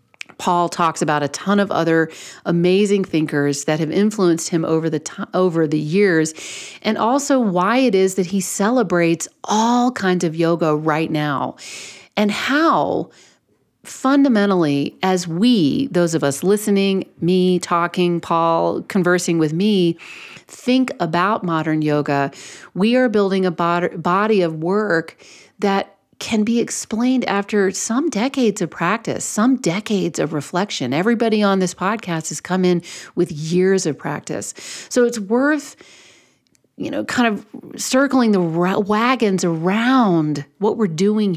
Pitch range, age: 170-210 Hz, 40-59